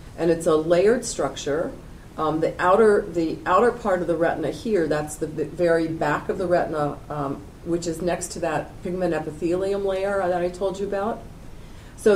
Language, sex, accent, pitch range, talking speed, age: English, female, American, 155-190 Hz, 180 wpm, 40-59